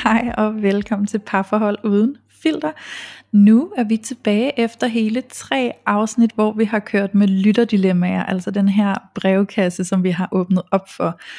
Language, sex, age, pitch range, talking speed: Danish, female, 30-49, 195-225 Hz, 165 wpm